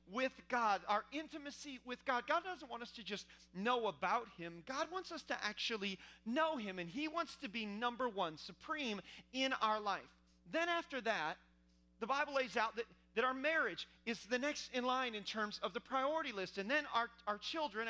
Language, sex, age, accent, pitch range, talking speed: English, male, 40-59, American, 205-270 Hz, 200 wpm